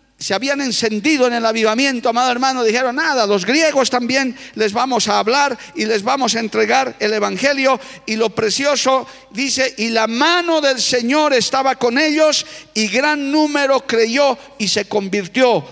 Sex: male